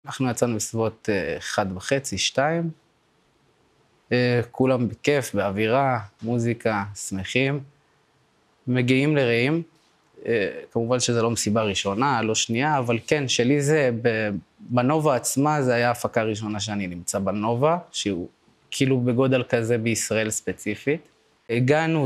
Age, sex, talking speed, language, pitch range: 20-39, male, 110 wpm, Hebrew, 110-145 Hz